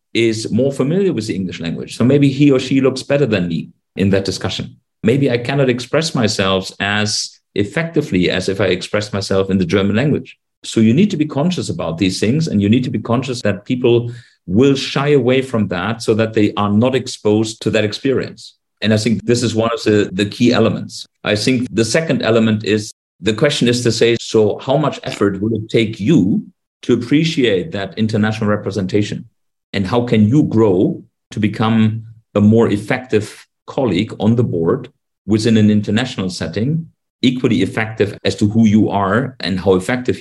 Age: 50-69